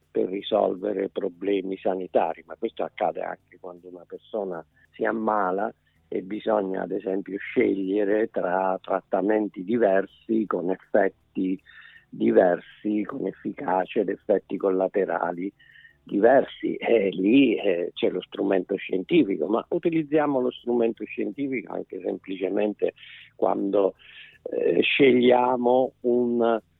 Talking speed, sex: 105 wpm, male